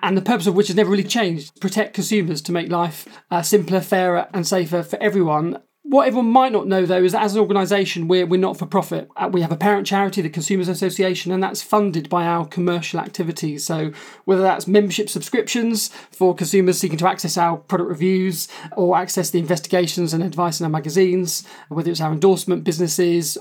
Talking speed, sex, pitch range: 200 wpm, male, 175-200 Hz